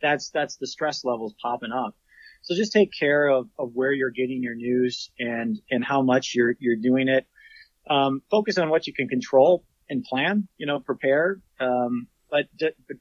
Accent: American